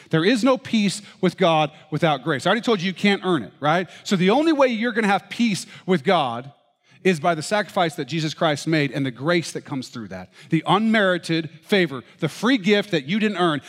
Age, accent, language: 40-59, American, English